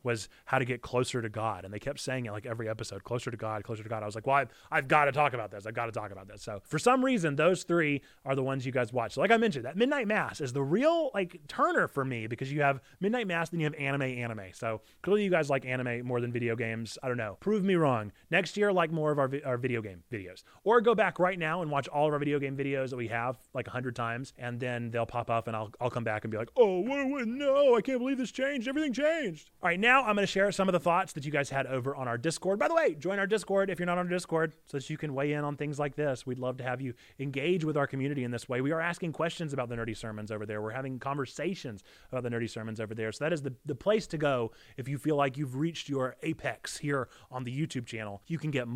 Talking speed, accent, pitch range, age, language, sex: 300 wpm, American, 120-170 Hz, 20-39, English, male